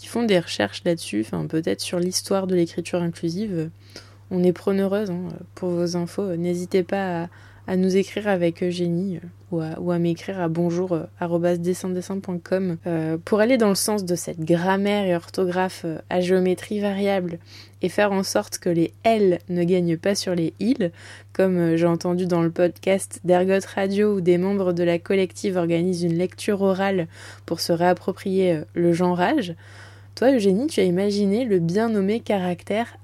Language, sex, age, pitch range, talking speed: French, female, 20-39, 170-200 Hz, 170 wpm